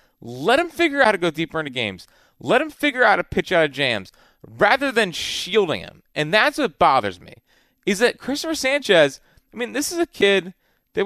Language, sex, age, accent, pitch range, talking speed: English, male, 30-49, American, 180-260 Hz, 210 wpm